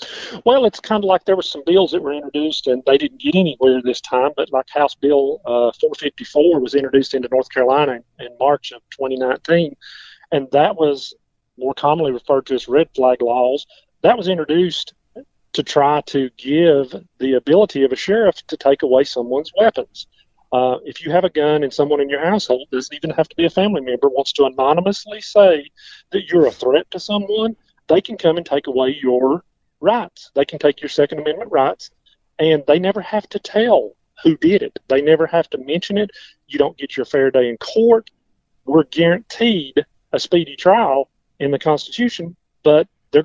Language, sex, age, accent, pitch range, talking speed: English, male, 40-59, American, 135-190 Hz, 195 wpm